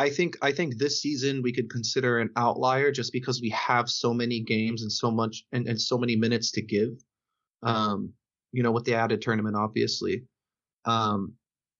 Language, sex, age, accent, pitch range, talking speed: English, male, 20-39, American, 115-130 Hz, 190 wpm